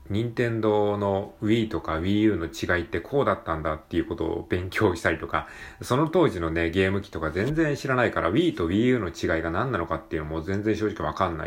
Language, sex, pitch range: Japanese, male, 85-115 Hz